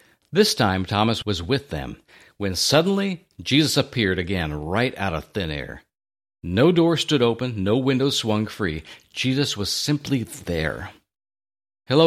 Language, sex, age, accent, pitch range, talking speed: English, male, 50-69, American, 95-140 Hz, 145 wpm